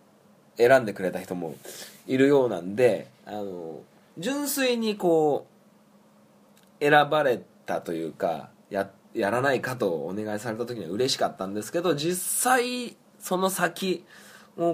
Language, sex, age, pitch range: Japanese, male, 20-39, 95-155 Hz